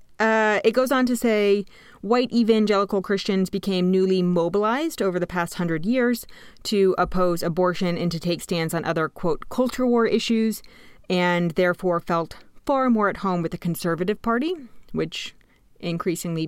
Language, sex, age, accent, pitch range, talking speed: English, female, 30-49, American, 170-230 Hz, 155 wpm